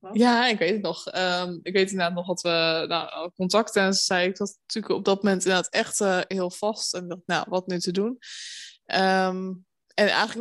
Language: Dutch